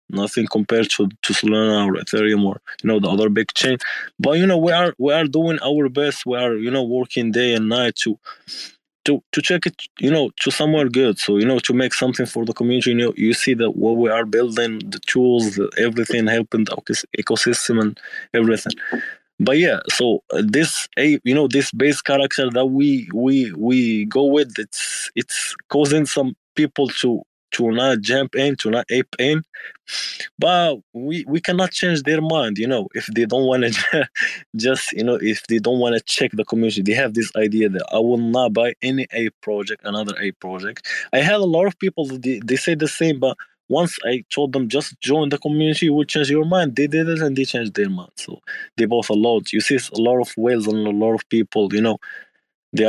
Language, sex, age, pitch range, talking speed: English, male, 20-39, 110-145 Hz, 215 wpm